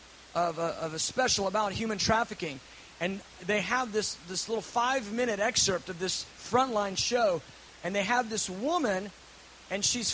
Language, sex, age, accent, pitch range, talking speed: English, male, 30-49, American, 190-260 Hz, 155 wpm